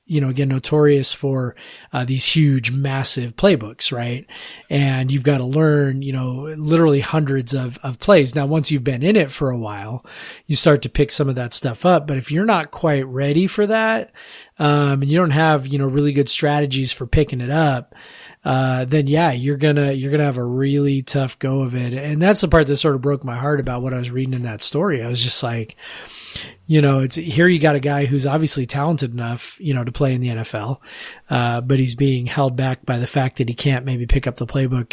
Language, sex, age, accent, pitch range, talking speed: English, male, 30-49, American, 130-150 Hz, 230 wpm